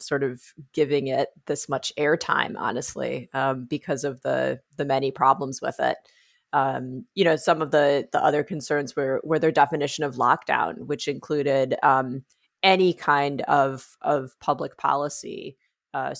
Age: 30-49